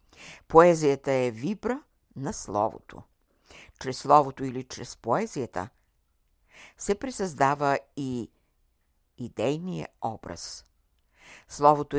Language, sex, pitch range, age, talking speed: Bulgarian, female, 110-155 Hz, 60-79, 80 wpm